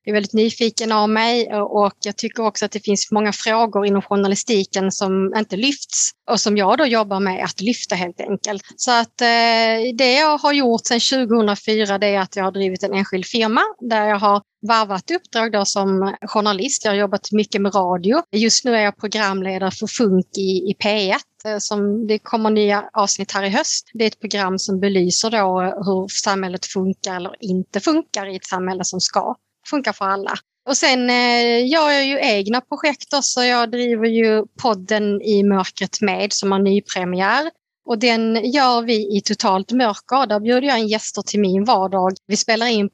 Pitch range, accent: 195-240 Hz, native